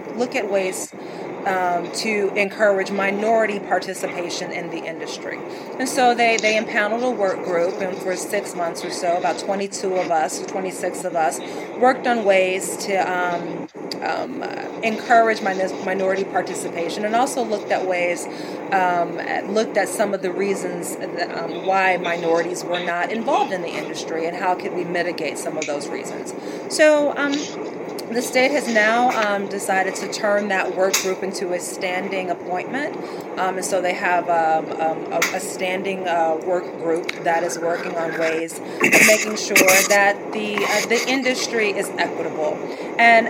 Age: 30-49